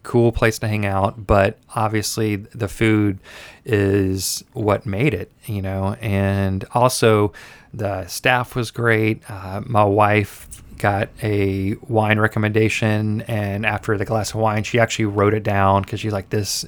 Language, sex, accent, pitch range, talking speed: English, male, American, 100-115 Hz, 155 wpm